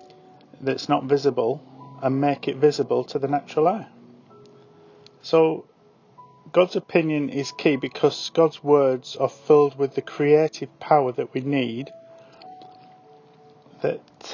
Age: 40-59